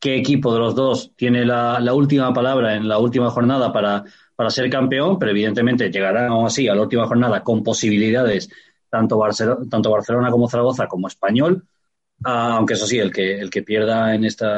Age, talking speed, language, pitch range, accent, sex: 30-49, 200 wpm, Spanish, 110-125 Hz, Spanish, male